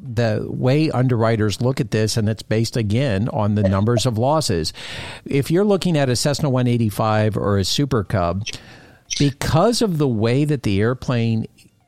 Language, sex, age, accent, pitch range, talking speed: English, male, 50-69, American, 105-135 Hz, 165 wpm